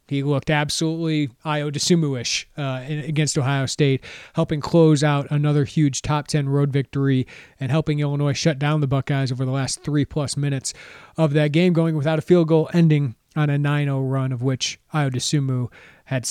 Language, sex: English, male